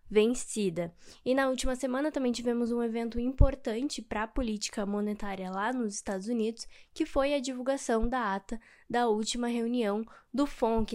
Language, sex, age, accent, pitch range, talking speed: Portuguese, female, 10-29, Brazilian, 215-255 Hz, 160 wpm